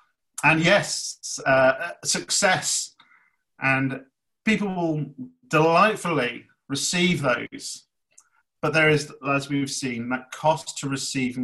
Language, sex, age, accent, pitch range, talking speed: English, male, 40-59, British, 125-155 Hz, 105 wpm